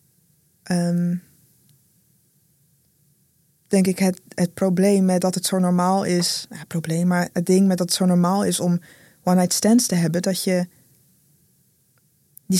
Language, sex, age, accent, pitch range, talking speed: Dutch, female, 20-39, Dutch, 165-195 Hz, 150 wpm